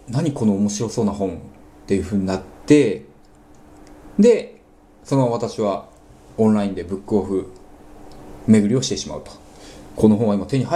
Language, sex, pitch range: Japanese, male, 85-140 Hz